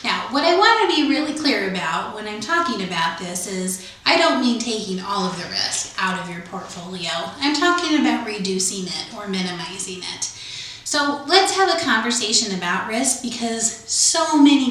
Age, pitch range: 30-49, 190-255 Hz